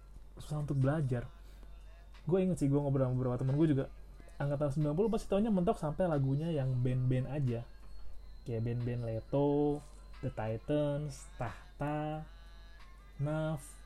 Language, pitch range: Indonesian, 130-160 Hz